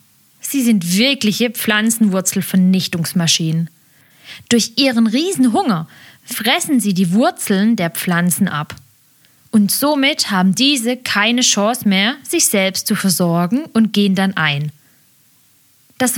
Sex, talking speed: female, 115 wpm